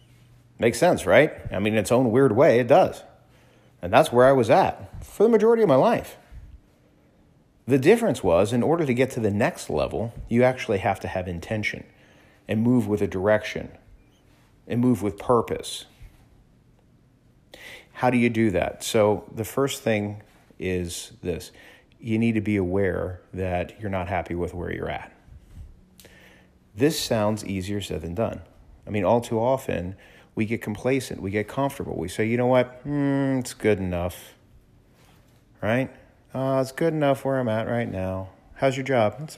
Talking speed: 175 wpm